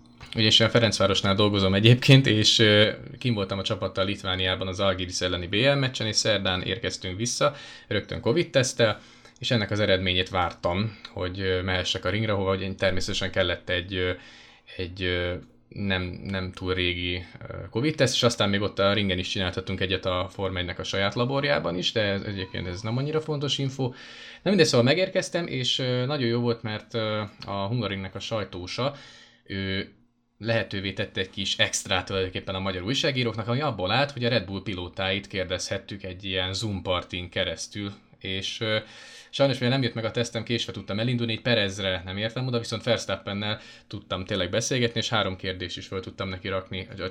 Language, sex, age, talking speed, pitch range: English, male, 20-39, 165 wpm, 95-115 Hz